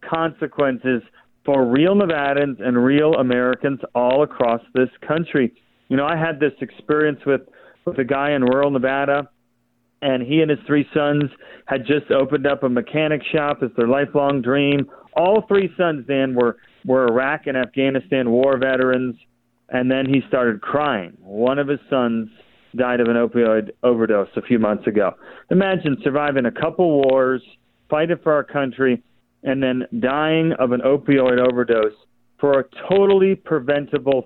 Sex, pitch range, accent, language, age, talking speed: male, 125-150 Hz, American, English, 40-59, 155 wpm